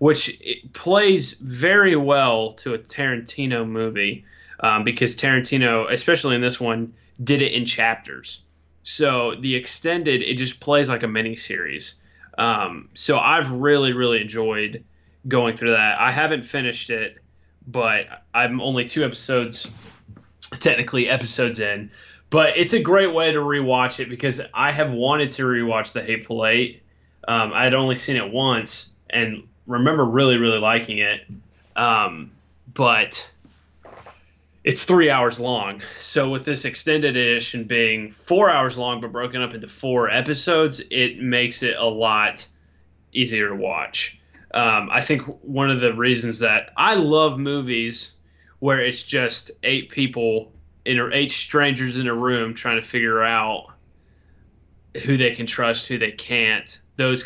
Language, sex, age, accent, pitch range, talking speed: English, male, 20-39, American, 110-135 Hz, 150 wpm